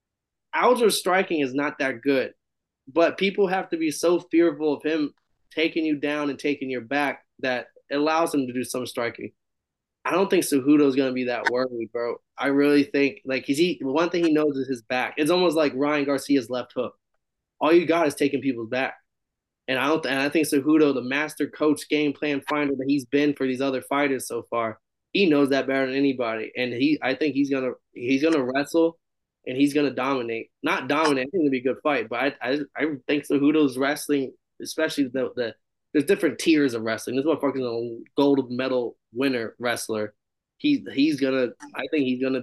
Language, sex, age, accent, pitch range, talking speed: English, male, 20-39, American, 130-150 Hz, 205 wpm